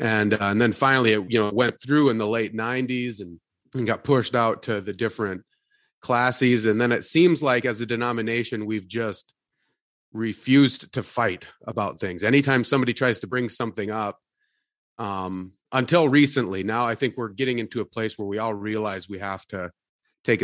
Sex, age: male, 30-49